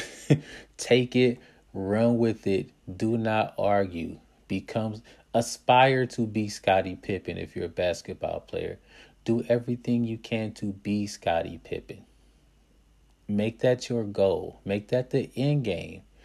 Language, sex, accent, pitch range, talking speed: English, male, American, 95-120 Hz, 135 wpm